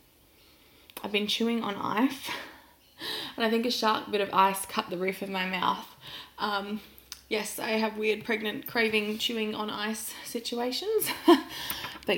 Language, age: English, 20-39